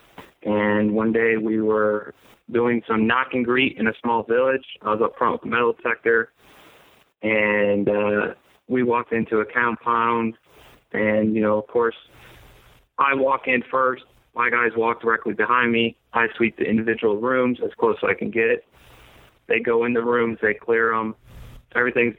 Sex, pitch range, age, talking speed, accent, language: male, 110-120 Hz, 20-39, 175 wpm, American, English